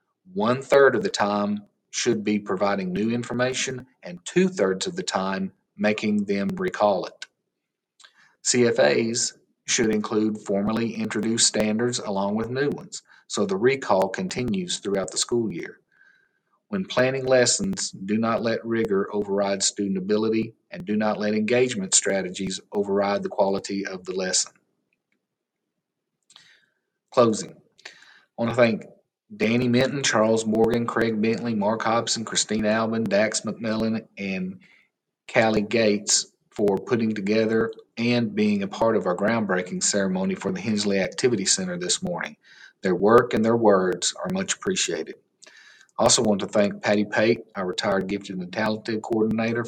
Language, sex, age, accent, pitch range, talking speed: English, male, 40-59, American, 105-120 Hz, 140 wpm